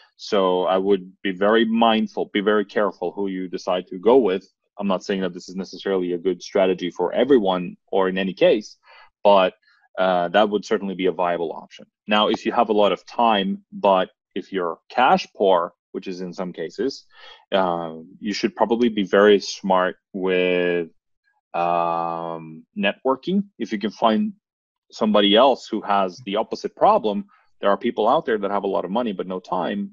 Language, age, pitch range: English, 30-49, 90-105 Hz